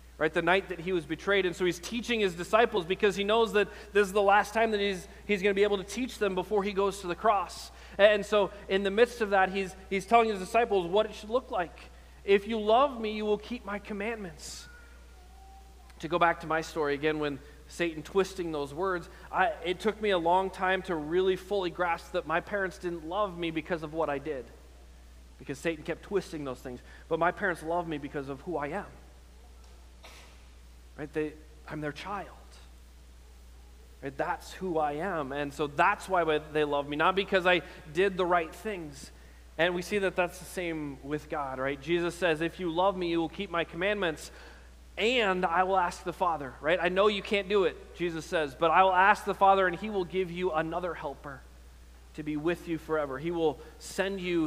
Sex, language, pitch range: male, English, 145-195 Hz